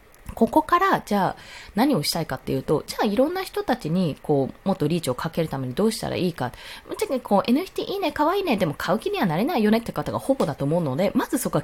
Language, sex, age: Japanese, female, 20-39